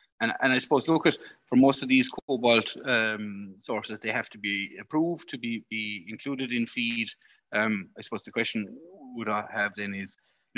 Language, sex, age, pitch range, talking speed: English, male, 30-49, 100-115 Hz, 200 wpm